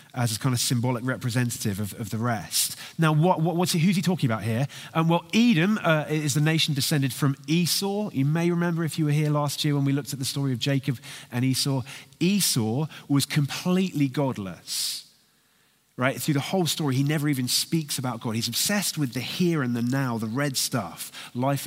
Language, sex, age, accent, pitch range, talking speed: English, male, 30-49, British, 115-155 Hz, 210 wpm